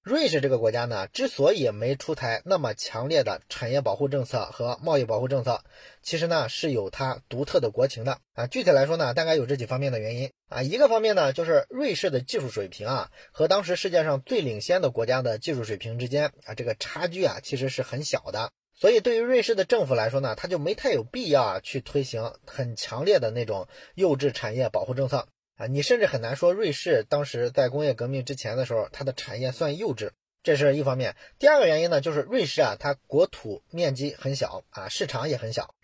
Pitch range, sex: 125-175 Hz, male